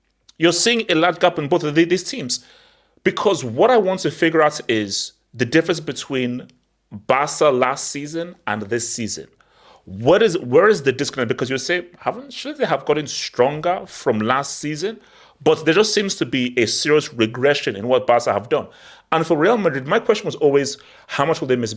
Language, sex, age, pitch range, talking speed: English, male, 30-49, 120-180 Hz, 200 wpm